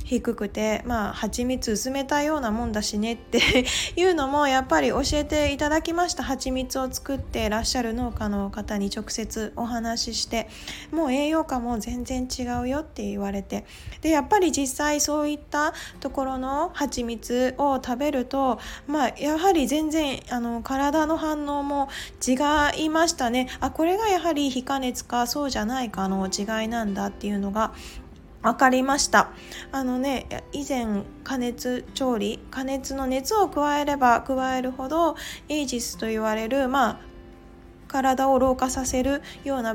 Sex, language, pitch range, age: female, Japanese, 235-295 Hz, 20-39